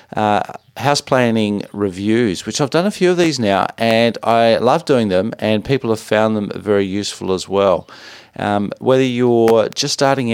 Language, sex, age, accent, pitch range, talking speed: English, male, 40-59, Australian, 100-120 Hz, 180 wpm